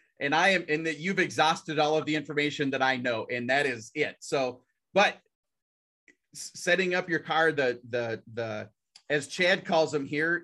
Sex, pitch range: male, 125-160 Hz